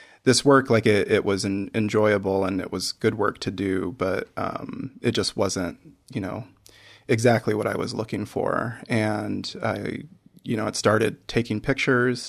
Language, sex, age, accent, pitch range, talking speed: English, male, 20-39, American, 100-115 Hz, 170 wpm